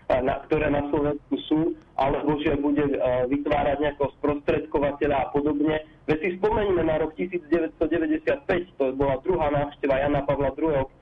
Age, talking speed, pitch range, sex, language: 30-49, 145 wpm, 140-165 Hz, male, Slovak